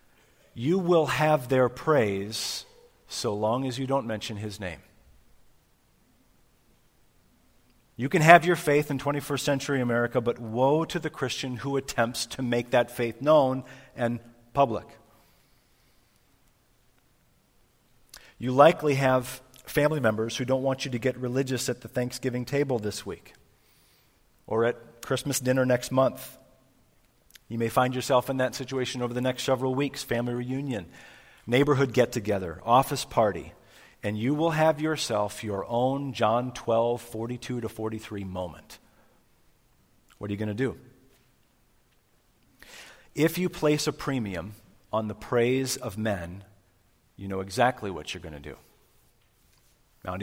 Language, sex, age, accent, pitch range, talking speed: English, male, 40-59, American, 110-135 Hz, 140 wpm